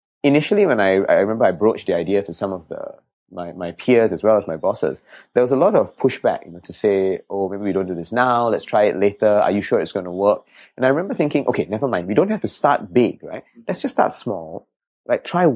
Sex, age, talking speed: male, 20-39, 265 wpm